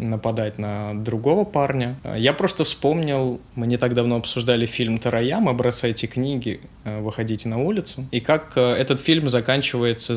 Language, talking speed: Russian, 140 wpm